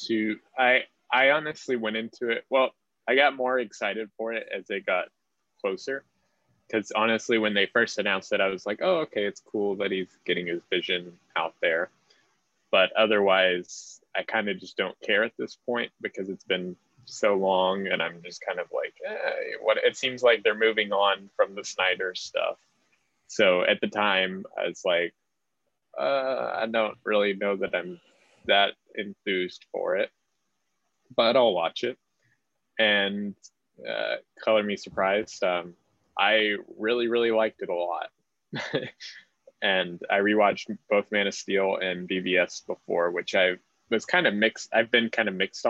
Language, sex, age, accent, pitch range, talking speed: English, male, 20-39, American, 95-115 Hz, 170 wpm